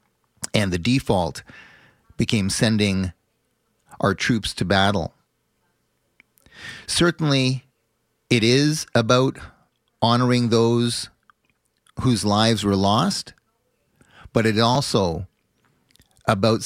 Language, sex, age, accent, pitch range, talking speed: English, male, 40-59, American, 100-120 Hz, 85 wpm